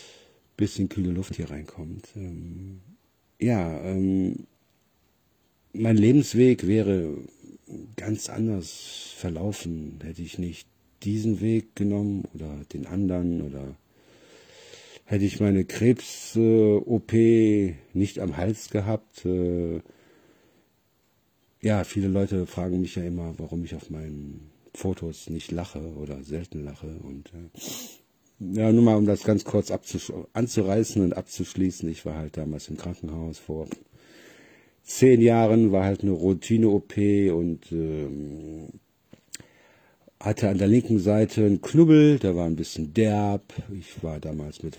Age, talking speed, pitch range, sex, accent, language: 50-69, 120 wpm, 80-105 Hz, male, German, German